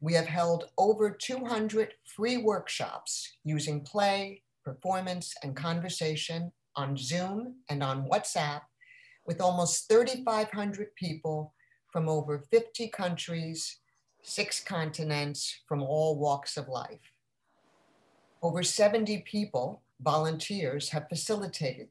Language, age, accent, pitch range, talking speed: English, 50-69, American, 150-205 Hz, 105 wpm